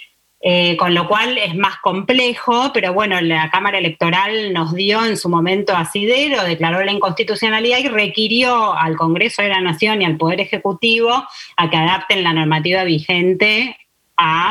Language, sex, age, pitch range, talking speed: Spanish, female, 20-39, 155-195 Hz, 160 wpm